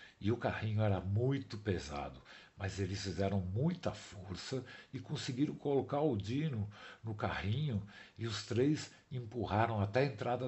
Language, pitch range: Portuguese, 100-155 Hz